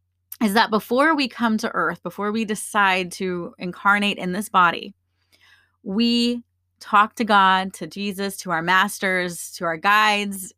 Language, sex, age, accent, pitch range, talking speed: English, female, 30-49, American, 175-230 Hz, 155 wpm